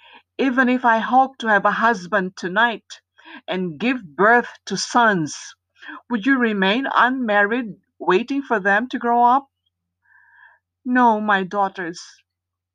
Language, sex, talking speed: Filipino, female, 125 wpm